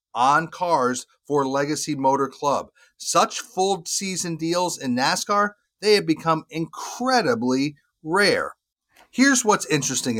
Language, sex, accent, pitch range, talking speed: English, male, American, 140-185 Hz, 120 wpm